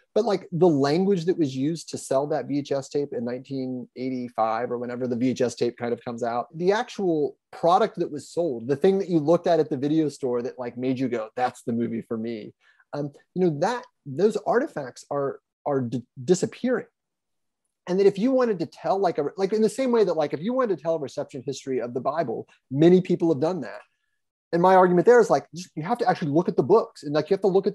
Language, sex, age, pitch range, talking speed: English, male, 30-49, 130-185 Hz, 240 wpm